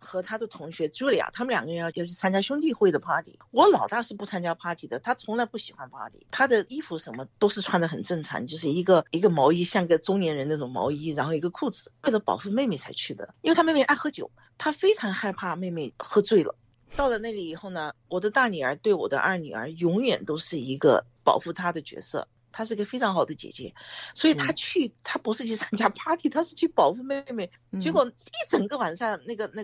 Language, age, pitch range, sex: Chinese, 50-69, 165-240 Hz, female